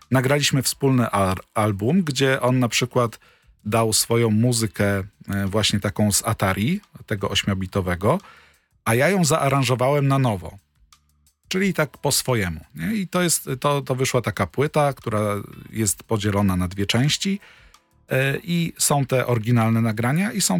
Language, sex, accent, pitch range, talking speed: Polish, male, native, 105-140 Hz, 150 wpm